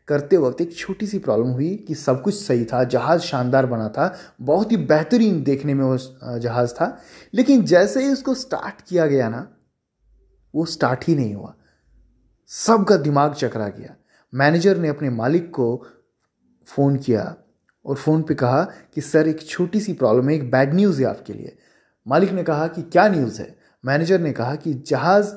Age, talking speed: 30-49, 180 wpm